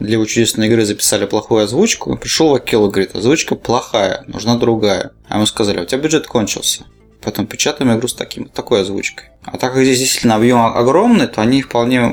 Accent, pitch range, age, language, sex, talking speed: native, 105-130 Hz, 20-39, Russian, male, 195 wpm